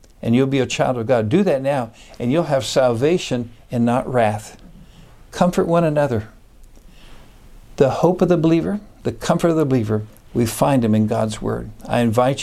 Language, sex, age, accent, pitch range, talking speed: English, male, 60-79, American, 115-150 Hz, 185 wpm